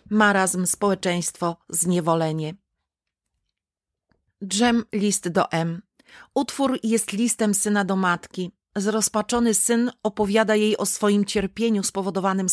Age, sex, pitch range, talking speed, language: 30-49, female, 190-215 Hz, 100 wpm, Polish